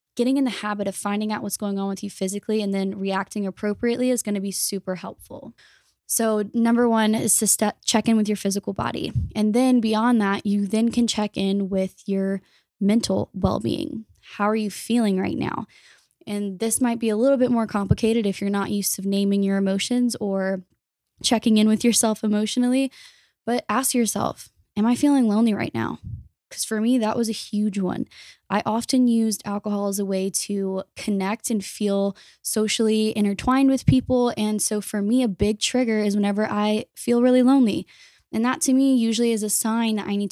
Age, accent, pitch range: 10-29, American, 200-235 Hz